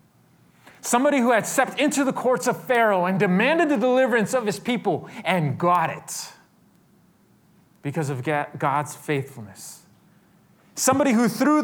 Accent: American